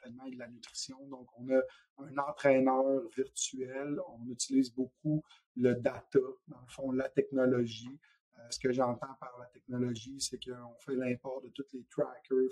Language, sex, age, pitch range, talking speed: French, male, 30-49, 125-135 Hz, 170 wpm